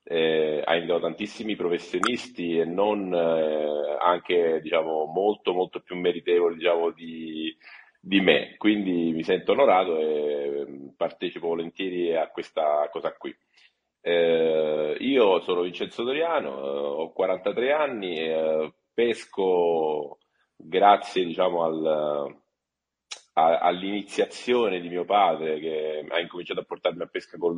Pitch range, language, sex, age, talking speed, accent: 80-95 Hz, Italian, male, 30-49, 120 wpm, native